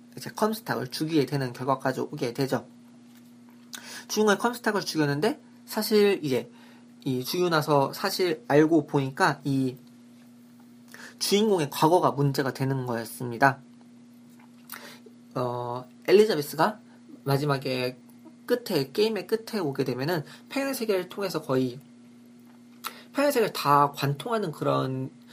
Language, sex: Korean, male